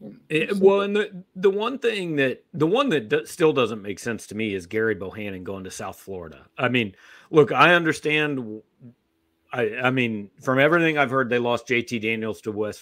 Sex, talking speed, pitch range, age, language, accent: male, 210 wpm, 110-170 Hz, 40-59, English, American